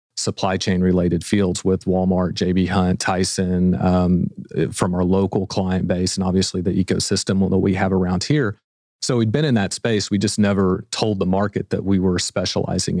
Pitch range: 95-100 Hz